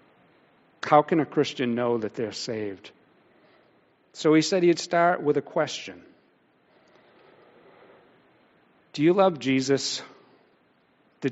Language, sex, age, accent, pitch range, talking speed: English, male, 50-69, American, 115-145 Hz, 110 wpm